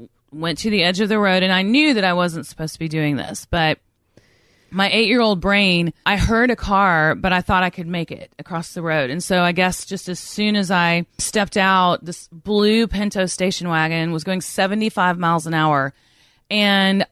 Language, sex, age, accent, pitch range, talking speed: English, female, 30-49, American, 170-205 Hz, 205 wpm